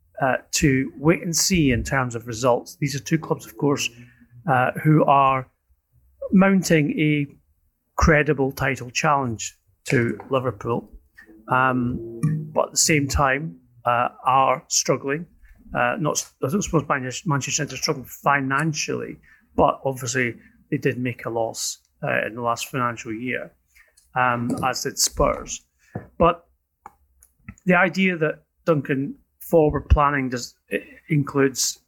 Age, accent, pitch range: 30-49, British, 115-145 Hz